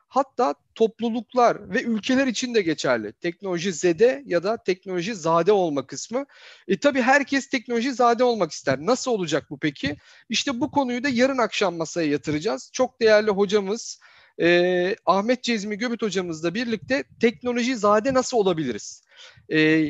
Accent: native